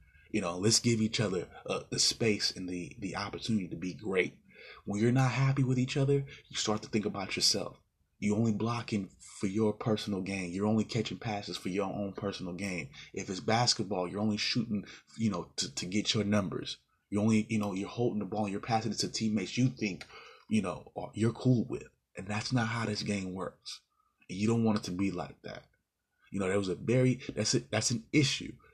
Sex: male